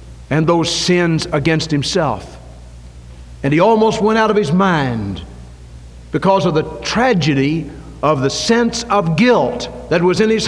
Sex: male